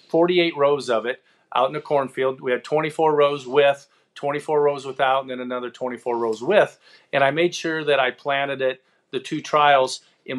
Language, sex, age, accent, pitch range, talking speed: English, male, 40-59, American, 130-155 Hz, 195 wpm